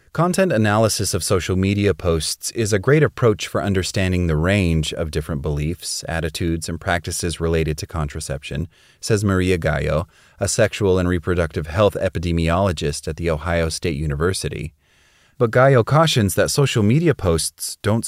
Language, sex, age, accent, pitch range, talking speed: English, male, 30-49, American, 80-110 Hz, 150 wpm